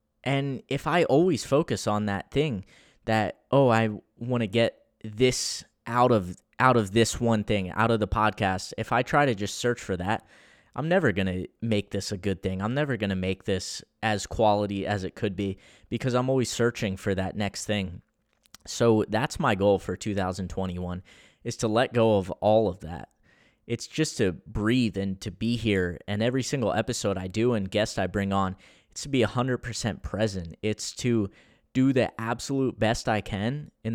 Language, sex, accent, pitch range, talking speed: English, male, American, 95-115 Hz, 190 wpm